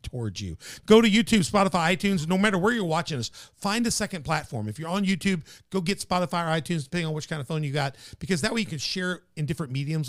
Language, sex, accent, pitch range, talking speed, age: English, male, American, 135-180 Hz, 260 wpm, 50-69